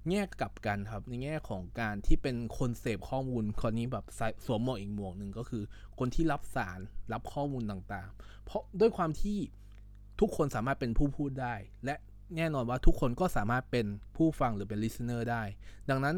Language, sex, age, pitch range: Thai, male, 20-39, 100-140 Hz